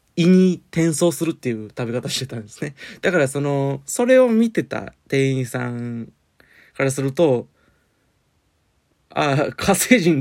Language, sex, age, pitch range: Japanese, male, 20-39, 115-150 Hz